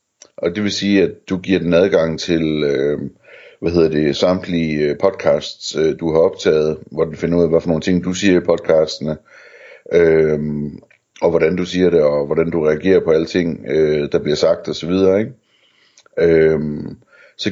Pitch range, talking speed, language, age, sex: 80-90 Hz, 180 wpm, Danish, 60-79, male